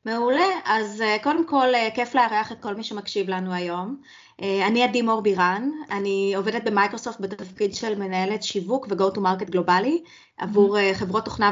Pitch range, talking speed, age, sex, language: 195-265 Hz, 175 wpm, 20-39, female, Hebrew